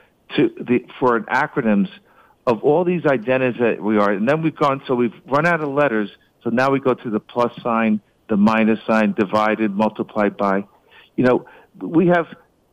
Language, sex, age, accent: English, male, 50-69, American